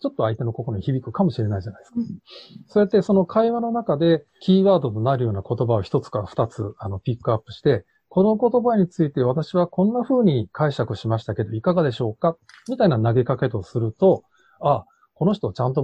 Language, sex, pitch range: Japanese, male, 110-185 Hz